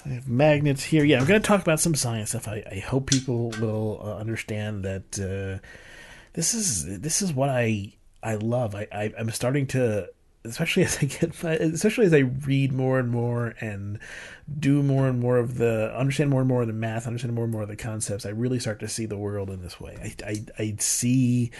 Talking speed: 225 wpm